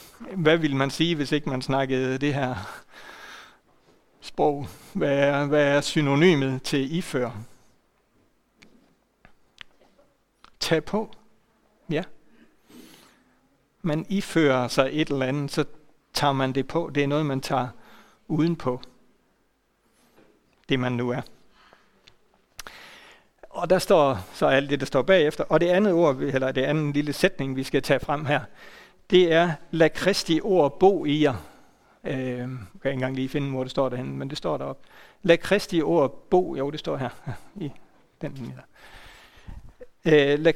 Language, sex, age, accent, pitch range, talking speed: Danish, male, 60-79, native, 130-165 Hz, 150 wpm